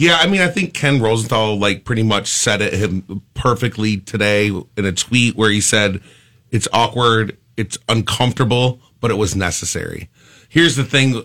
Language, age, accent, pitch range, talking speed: English, 30-49, American, 110-145 Hz, 170 wpm